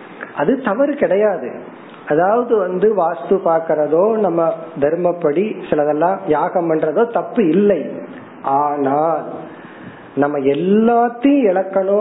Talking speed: 80 wpm